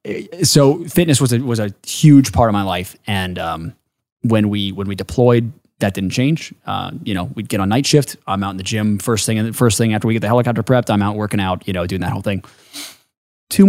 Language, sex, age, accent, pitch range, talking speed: English, male, 20-39, American, 105-130 Hz, 250 wpm